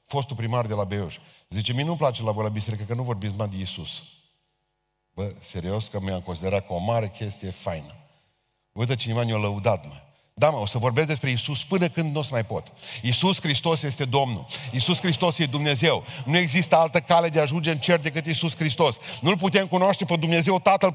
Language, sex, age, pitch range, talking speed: Romanian, male, 40-59, 115-165 Hz, 210 wpm